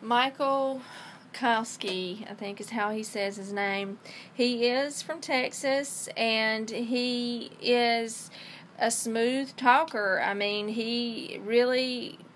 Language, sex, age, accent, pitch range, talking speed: English, female, 40-59, American, 205-240 Hz, 115 wpm